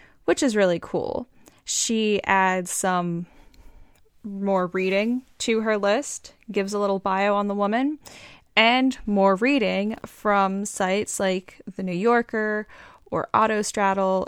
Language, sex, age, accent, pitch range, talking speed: English, female, 10-29, American, 190-230 Hz, 125 wpm